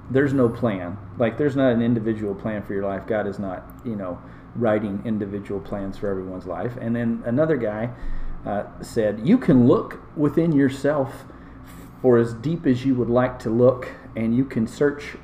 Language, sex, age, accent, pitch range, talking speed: English, male, 40-59, American, 105-135 Hz, 185 wpm